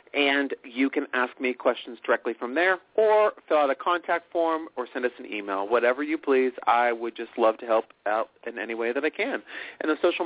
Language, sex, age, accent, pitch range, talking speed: English, male, 40-59, American, 115-155 Hz, 230 wpm